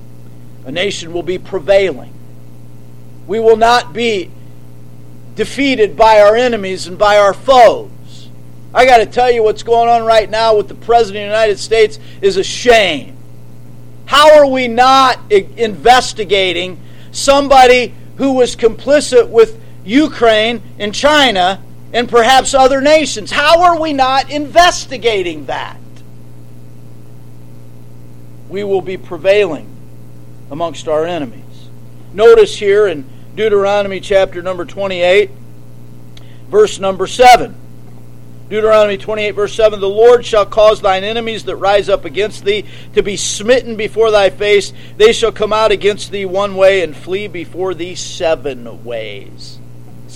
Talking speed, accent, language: 135 wpm, American, English